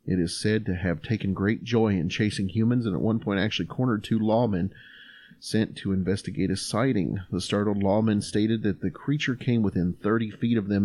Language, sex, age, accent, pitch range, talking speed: English, male, 40-59, American, 95-115 Hz, 205 wpm